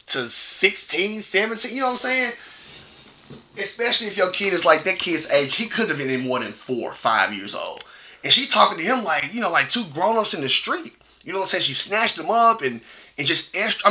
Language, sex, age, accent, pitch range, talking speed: English, male, 30-49, American, 120-175 Hz, 240 wpm